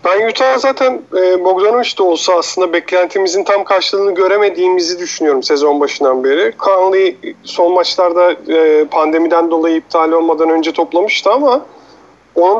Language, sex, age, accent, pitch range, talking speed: Turkish, male, 40-59, native, 165-245 Hz, 135 wpm